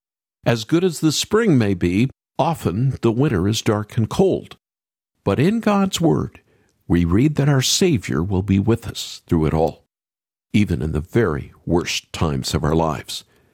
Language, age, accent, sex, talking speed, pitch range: English, 60-79, American, male, 175 wpm, 95-140 Hz